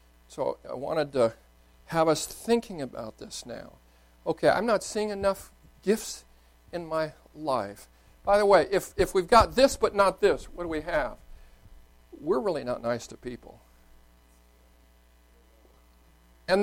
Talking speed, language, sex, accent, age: 150 wpm, English, male, American, 50-69